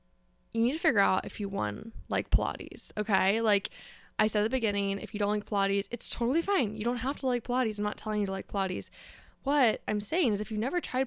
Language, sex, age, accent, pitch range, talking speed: English, female, 10-29, American, 200-250 Hz, 255 wpm